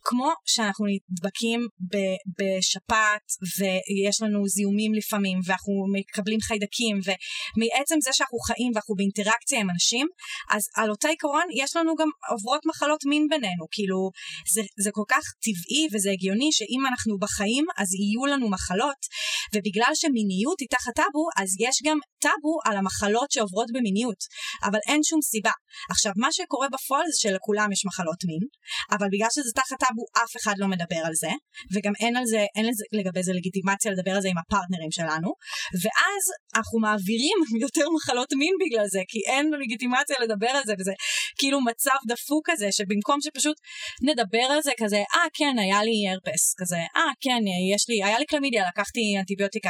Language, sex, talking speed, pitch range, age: Hebrew, female, 170 wpm, 200-280 Hz, 20-39